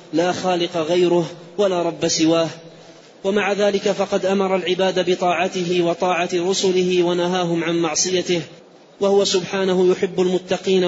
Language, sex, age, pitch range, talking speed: Arabic, male, 30-49, 170-185 Hz, 115 wpm